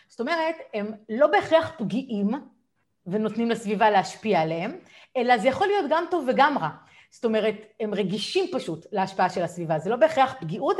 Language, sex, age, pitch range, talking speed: Hebrew, female, 30-49, 195-275 Hz, 165 wpm